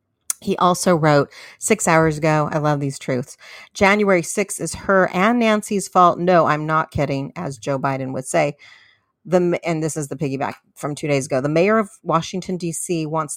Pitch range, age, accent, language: 140-175 Hz, 40-59, American, English